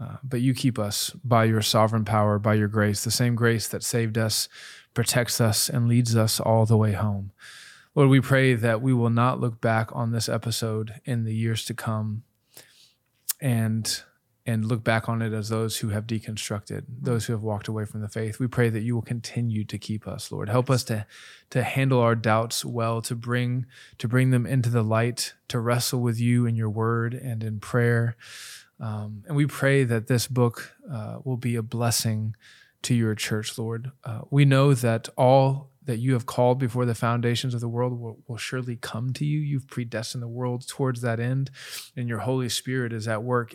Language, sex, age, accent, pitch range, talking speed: English, male, 20-39, American, 110-125 Hz, 205 wpm